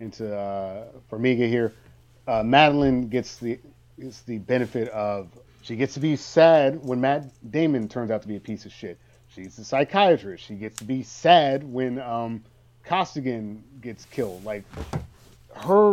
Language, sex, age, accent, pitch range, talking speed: English, male, 30-49, American, 110-135 Hz, 160 wpm